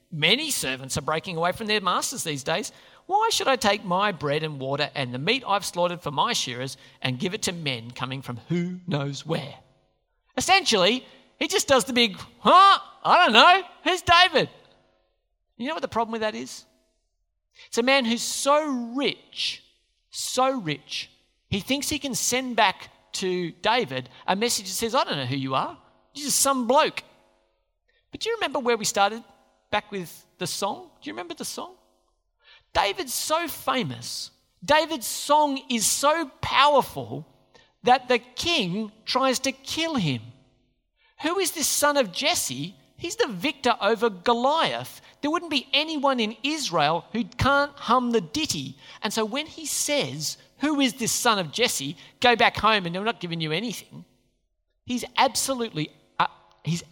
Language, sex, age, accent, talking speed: English, male, 40-59, Australian, 170 wpm